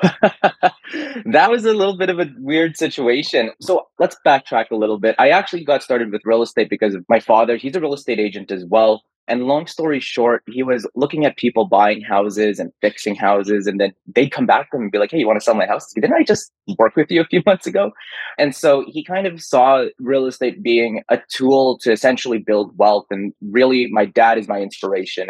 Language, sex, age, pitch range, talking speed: English, male, 20-39, 105-130 Hz, 230 wpm